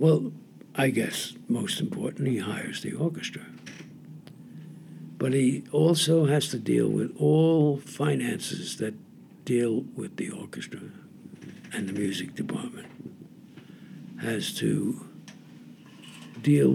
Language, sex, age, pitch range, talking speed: English, male, 60-79, 135-160 Hz, 110 wpm